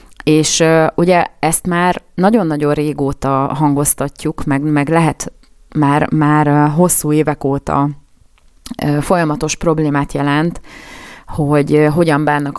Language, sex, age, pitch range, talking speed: Hungarian, female, 30-49, 140-160 Hz, 100 wpm